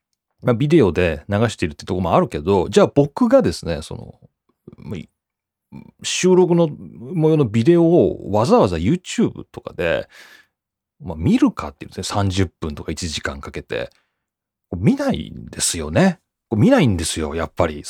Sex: male